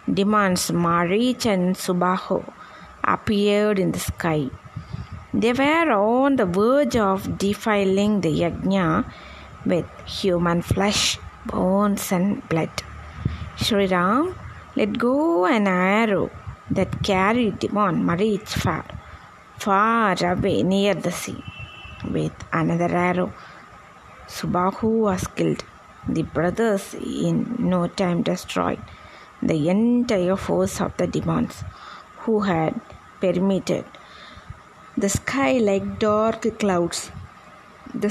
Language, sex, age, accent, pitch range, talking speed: Tamil, female, 20-39, native, 180-215 Hz, 105 wpm